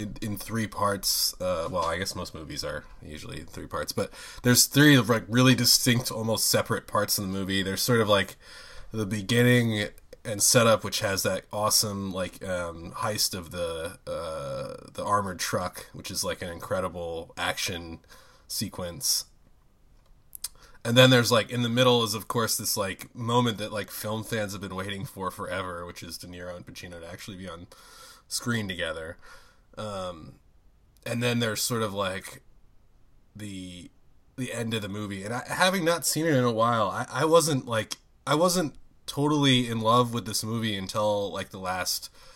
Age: 20-39